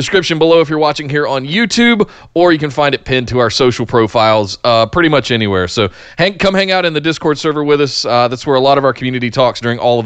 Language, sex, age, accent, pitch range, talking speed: English, male, 20-39, American, 125-175 Hz, 270 wpm